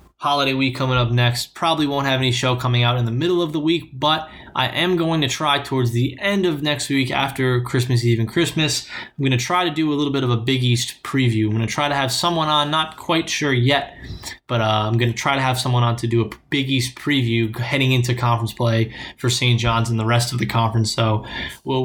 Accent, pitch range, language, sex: American, 120-145 Hz, English, male